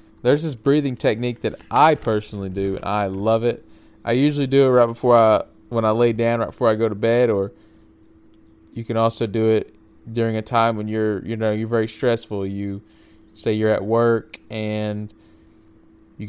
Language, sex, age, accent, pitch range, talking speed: English, male, 20-39, American, 105-115 Hz, 190 wpm